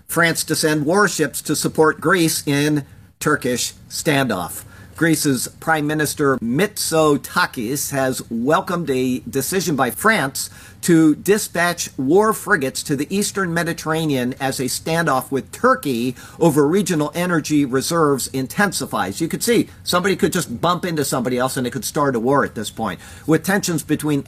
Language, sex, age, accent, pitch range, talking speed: English, male, 50-69, American, 130-165 Hz, 150 wpm